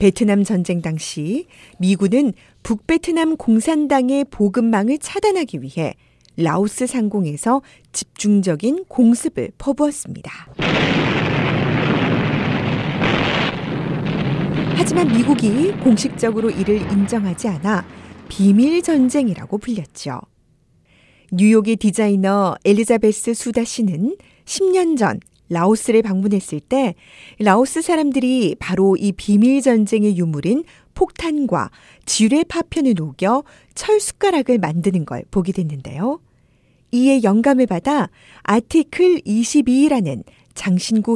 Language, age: Korean, 40-59